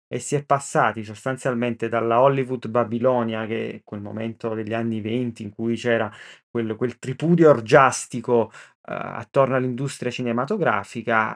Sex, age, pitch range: male, 30-49, 120-150 Hz